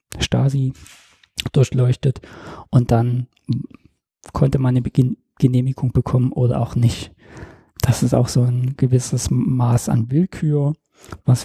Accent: German